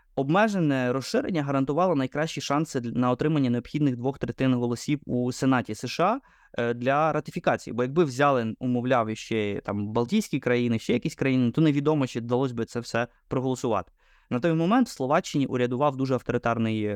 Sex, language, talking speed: male, Ukrainian, 150 wpm